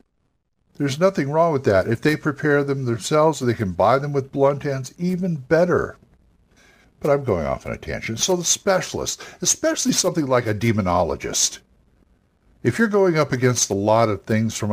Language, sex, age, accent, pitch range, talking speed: English, male, 60-79, American, 105-145 Hz, 180 wpm